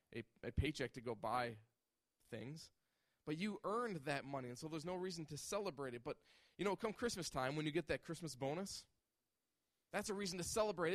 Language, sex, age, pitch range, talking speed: English, male, 20-39, 155-210 Hz, 205 wpm